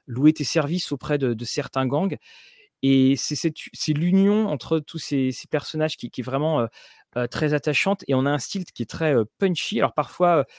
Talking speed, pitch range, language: 210 wpm, 125-165 Hz, French